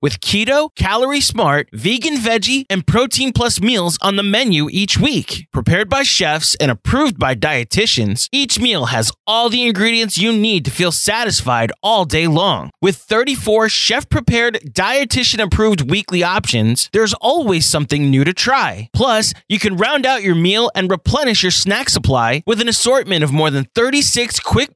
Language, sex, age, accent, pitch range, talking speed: English, male, 20-39, American, 155-230 Hz, 165 wpm